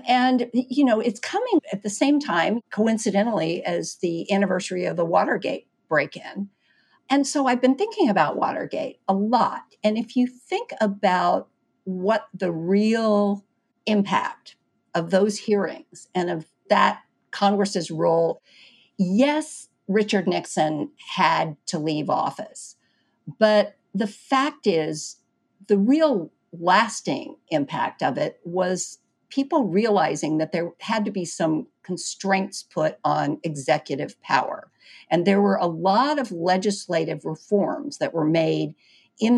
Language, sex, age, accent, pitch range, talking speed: English, female, 50-69, American, 175-245 Hz, 135 wpm